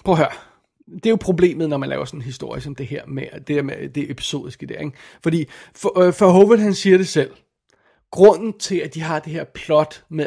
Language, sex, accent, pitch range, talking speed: Danish, male, native, 150-185 Hz, 240 wpm